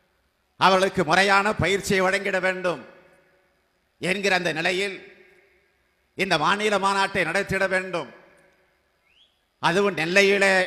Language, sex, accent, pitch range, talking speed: Tamil, male, native, 175-195 Hz, 85 wpm